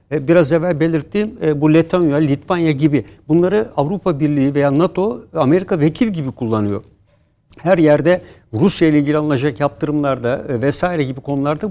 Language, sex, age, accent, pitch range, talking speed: Turkish, male, 60-79, native, 130-165 Hz, 135 wpm